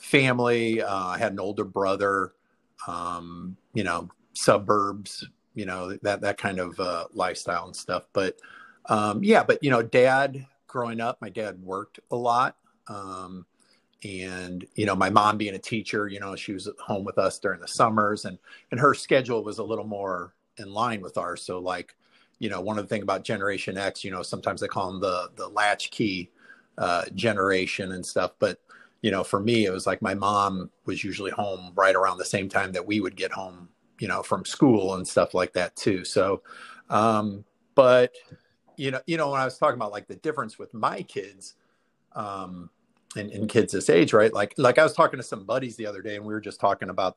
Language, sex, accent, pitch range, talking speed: English, male, American, 95-115 Hz, 210 wpm